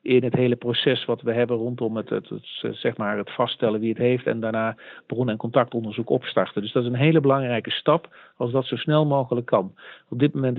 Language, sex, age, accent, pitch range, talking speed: Dutch, male, 50-69, Dutch, 115-135 Hz, 225 wpm